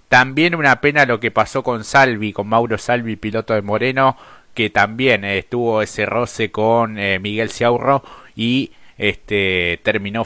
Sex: male